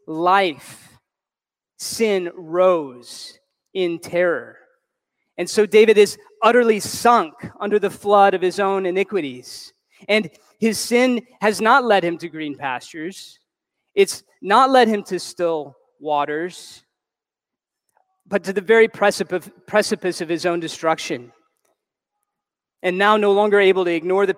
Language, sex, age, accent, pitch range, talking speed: English, male, 20-39, American, 160-205 Hz, 130 wpm